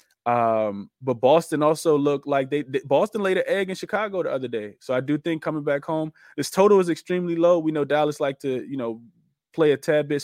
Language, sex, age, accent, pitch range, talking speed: English, male, 20-39, American, 125-155 Hz, 235 wpm